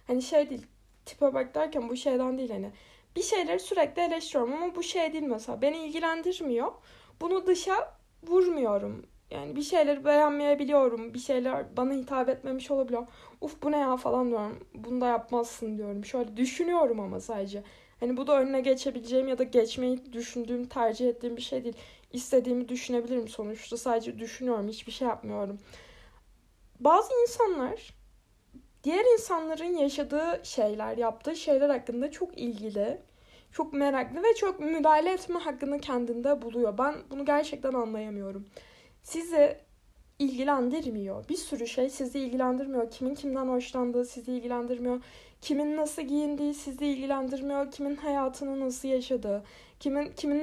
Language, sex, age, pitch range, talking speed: Turkish, female, 20-39, 245-295 Hz, 140 wpm